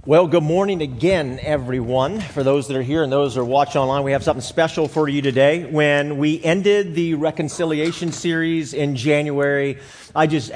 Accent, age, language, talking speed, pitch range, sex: American, 40-59, English, 190 wpm, 125-155 Hz, male